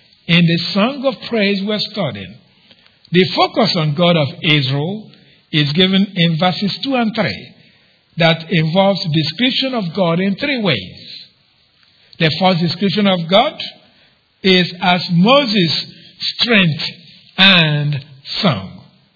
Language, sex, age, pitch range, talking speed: English, male, 60-79, 150-195 Hz, 120 wpm